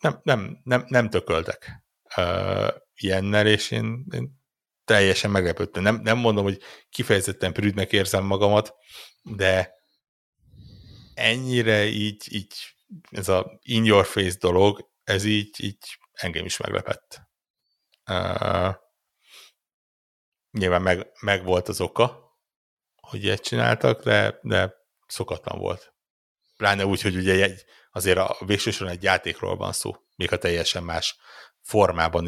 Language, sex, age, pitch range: Hungarian, male, 60-79, 95-115 Hz